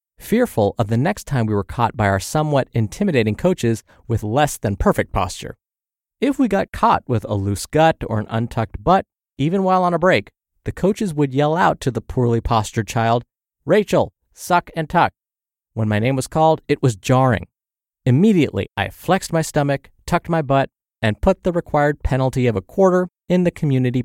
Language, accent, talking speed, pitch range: English, American, 190 wpm, 110-165 Hz